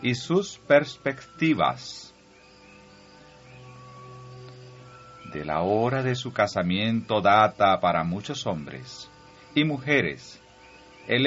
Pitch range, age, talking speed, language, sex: 90-135 Hz, 40-59, 85 wpm, Spanish, male